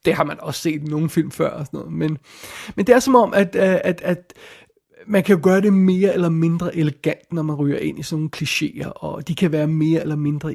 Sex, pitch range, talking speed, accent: male, 150-190 Hz, 260 wpm, native